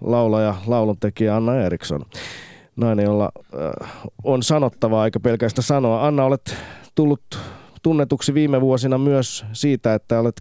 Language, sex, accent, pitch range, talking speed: Finnish, male, native, 95-120 Hz, 120 wpm